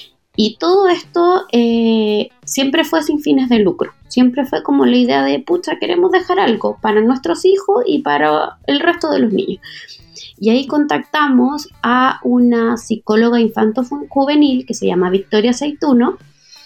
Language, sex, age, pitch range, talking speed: Spanish, female, 20-39, 205-285 Hz, 155 wpm